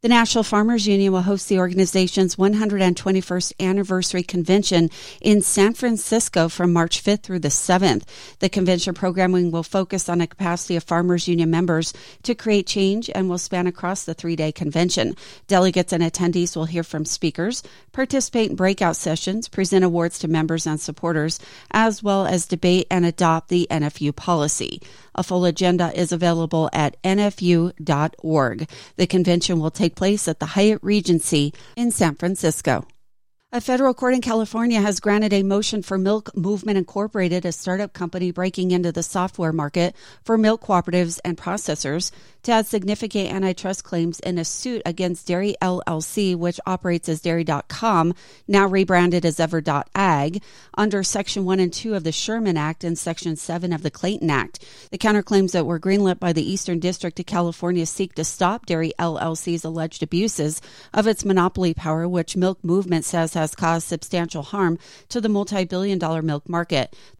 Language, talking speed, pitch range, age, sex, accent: English, 165 wpm, 165-195 Hz, 40-59, female, American